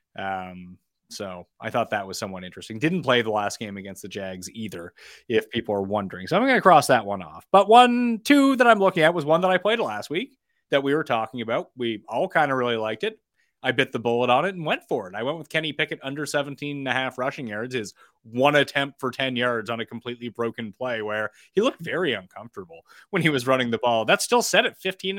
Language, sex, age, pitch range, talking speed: English, male, 30-49, 120-195 Hz, 245 wpm